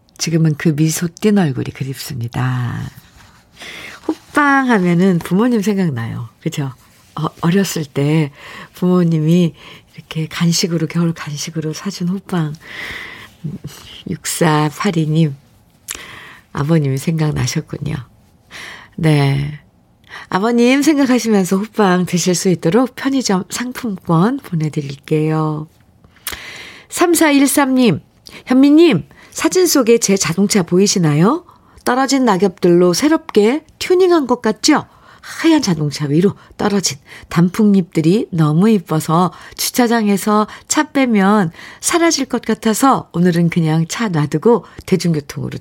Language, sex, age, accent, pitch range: Korean, female, 50-69, native, 155-225 Hz